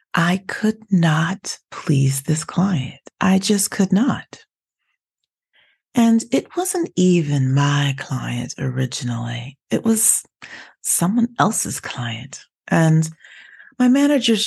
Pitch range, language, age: 130-175 Hz, English, 40-59